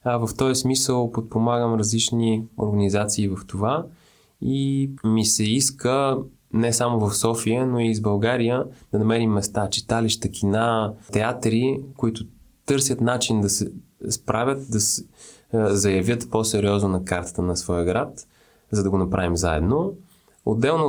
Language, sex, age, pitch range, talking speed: Bulgarian, male, 20-39, 95-120 Hz, 135 wpm